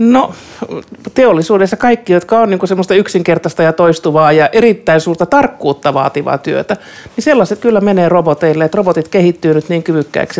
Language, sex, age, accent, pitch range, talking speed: Finnish, male, 50-69, native, 165-200 Hz, 160 wpm